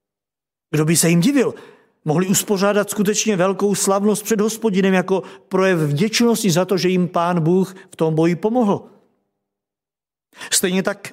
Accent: native